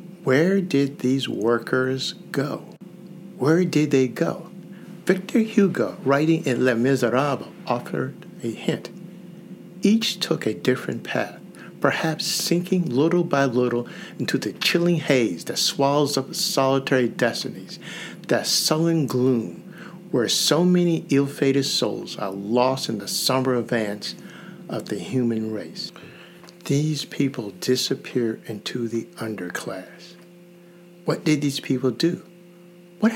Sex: male